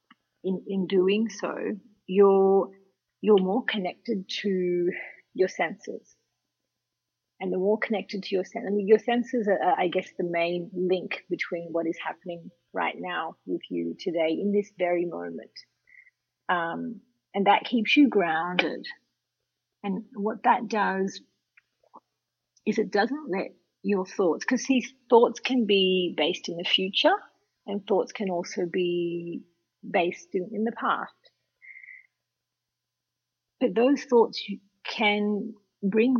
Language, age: English, 40-59